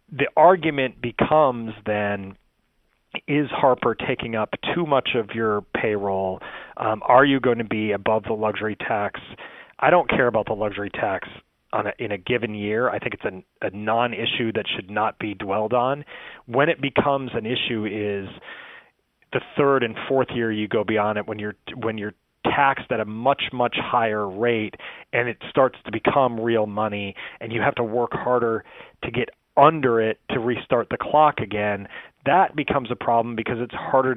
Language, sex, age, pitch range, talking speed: English, male, 30-49, 105-125 Hz, 180 wpm